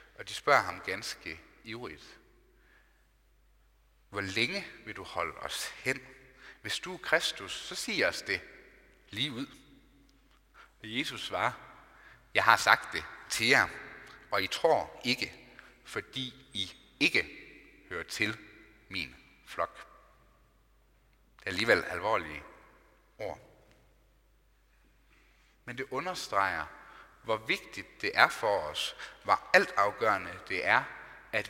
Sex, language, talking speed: male, Danish, 120 wpm